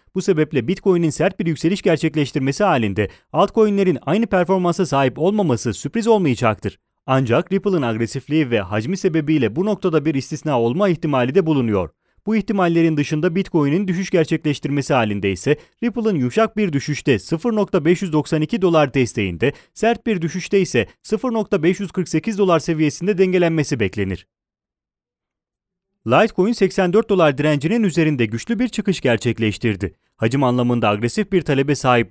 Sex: male